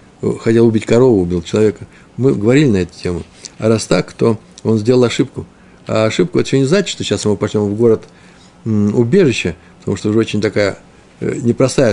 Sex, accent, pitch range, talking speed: male, native, 105-145 Hz, 175 wpm